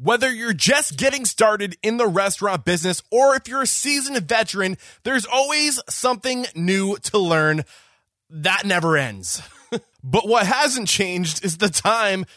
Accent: American